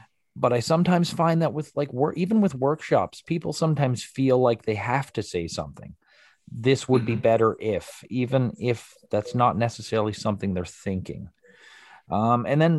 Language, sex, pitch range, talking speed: English, male, 105-135 Hz, 165 wpm